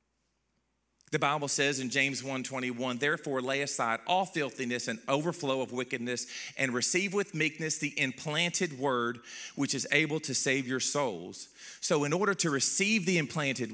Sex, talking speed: male, 160 wpm